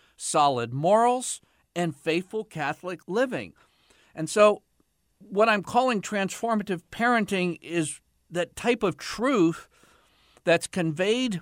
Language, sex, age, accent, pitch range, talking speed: English, male, 50-69, American, 135-210 Hz, 105 wpm